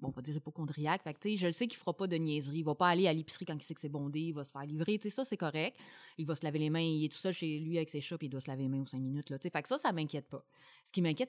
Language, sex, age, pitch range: French, female, 30-49, 145-180 Hz